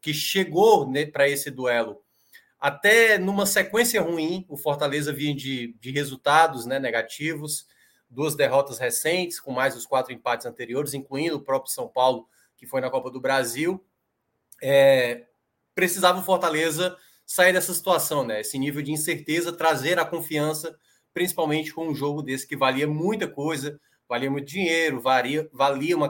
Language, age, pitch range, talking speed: Portuguese, 20-39, 135-170 Hz, 155 wpm